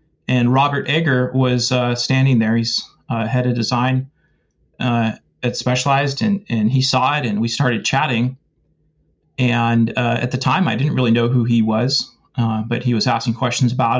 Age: 30-49